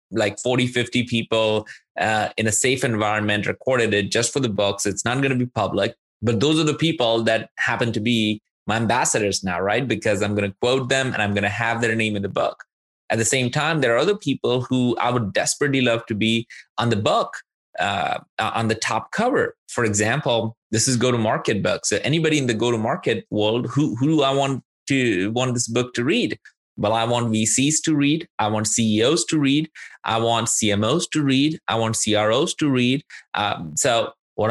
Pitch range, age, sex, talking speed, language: 110-135 Hz, 20-39, male, 205 wpm, English